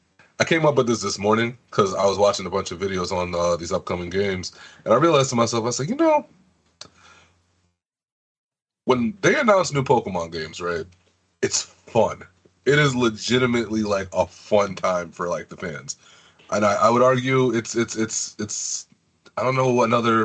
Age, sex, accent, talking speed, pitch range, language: 30-49, male, American, 185 wpm, 100-125 Hz, English